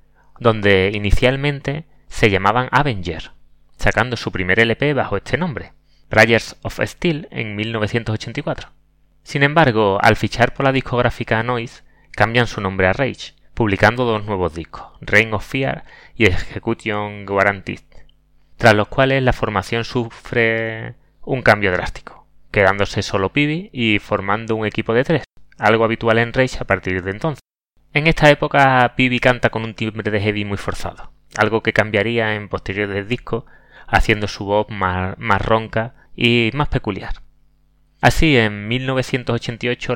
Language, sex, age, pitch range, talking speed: Spanish, male, 30-49, 100-125 Hz, 145 wpm